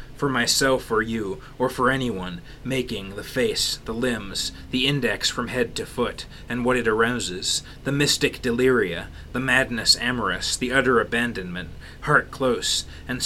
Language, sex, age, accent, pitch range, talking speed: English, male, 30-49, American, 105-130 Hz, 155 wpm